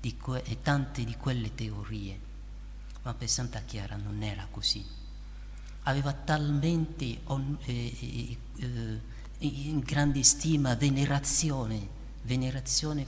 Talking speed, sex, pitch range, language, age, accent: 105 wpm, male, 110-135 Hz, Italian, 50-69, native